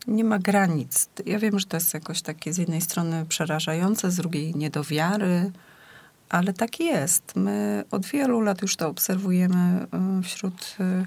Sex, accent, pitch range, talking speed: female, native, 170-205 Hz, 150 wpm